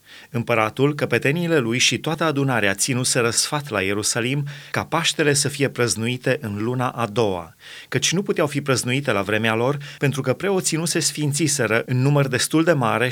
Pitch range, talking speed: 120-150 Hz, 175 wpm